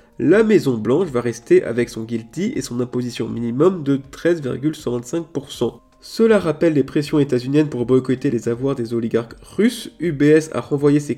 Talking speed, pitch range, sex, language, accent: 155 wpm, 120-165 Hz, male, French, French